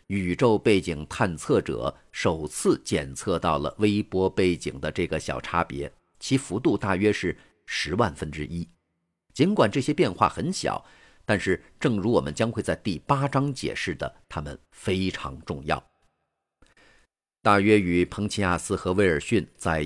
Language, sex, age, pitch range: Chinese, male, 50-69, 80-110 Hz